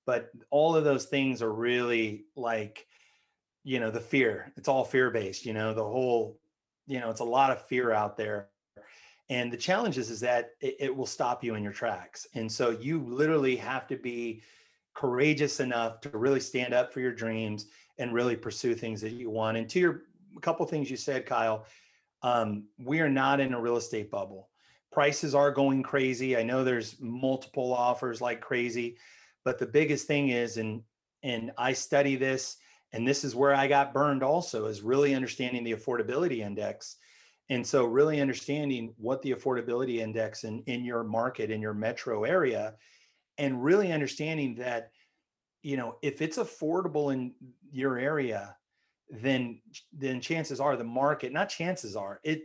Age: 30-49